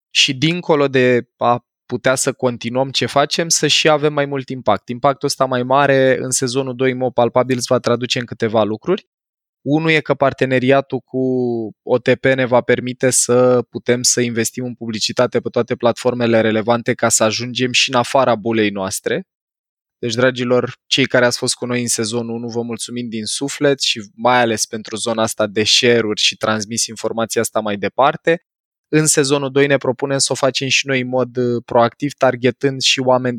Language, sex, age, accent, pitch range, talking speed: Romanian, male, 20-39, native, 115-130 Hz, 180 wpm